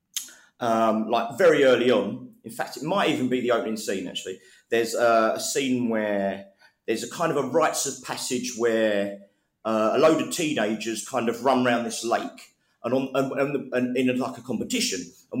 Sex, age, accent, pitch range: male, 30-49, British, 110-150 Hz